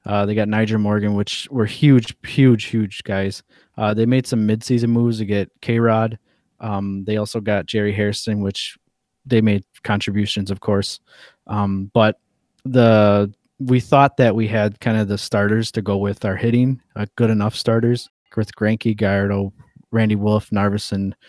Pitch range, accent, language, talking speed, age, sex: 105-115 Hz, American, English, 165 wpm, 20-39, male